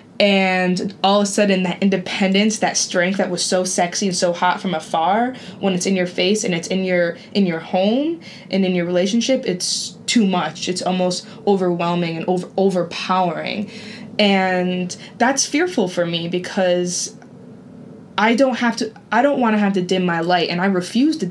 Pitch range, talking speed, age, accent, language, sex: 180-215 Hz, 185 wpm, 20-39, American, English, female